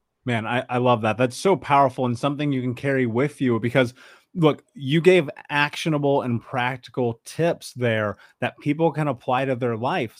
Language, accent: English, American